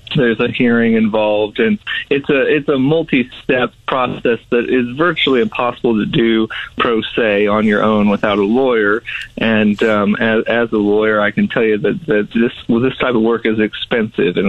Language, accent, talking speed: English, American, 185 wpm